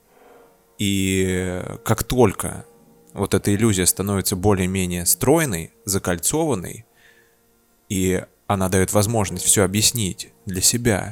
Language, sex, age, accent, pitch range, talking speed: Russian, male, 20-39, native, 95-115 Hz, 95 wpm